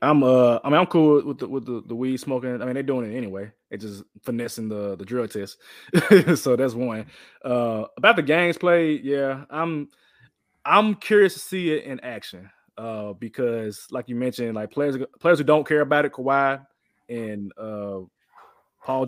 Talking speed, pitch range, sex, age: 190 wpm, 115-140 Hz, male, 20-39